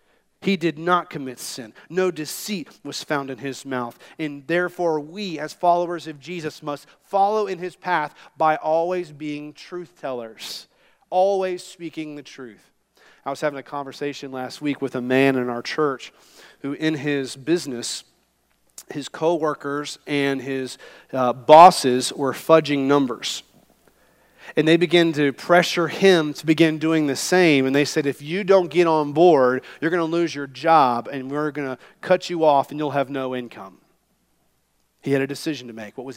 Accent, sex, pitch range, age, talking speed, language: American, male, 130-165 Hz, 40-59, 175 wpm, English